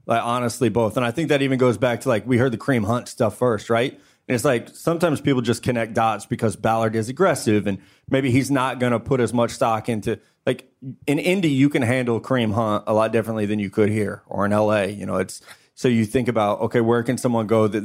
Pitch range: 110-130 Hz